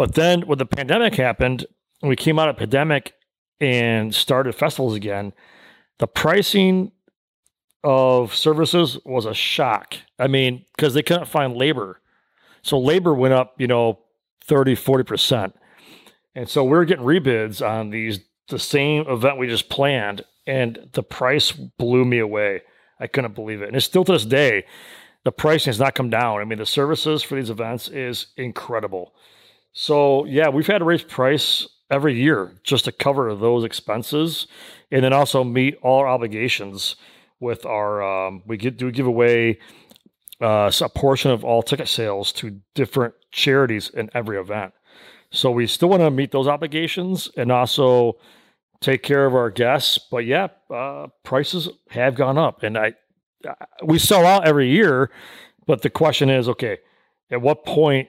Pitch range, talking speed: 115-150 Hz, 170 wpm